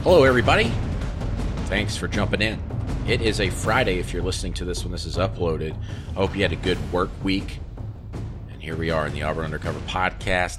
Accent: American